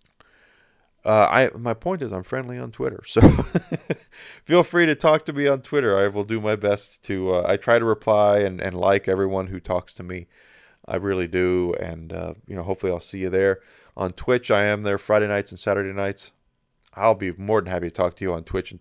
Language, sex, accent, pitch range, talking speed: English, male, American, 95-115 Hz, 225 wpm